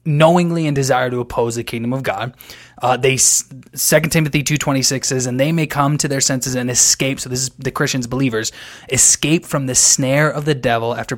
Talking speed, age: 215 wpm, 20-39